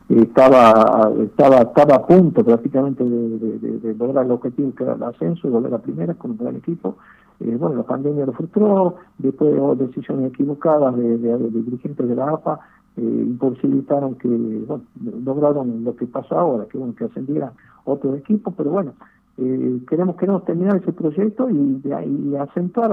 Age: 50-69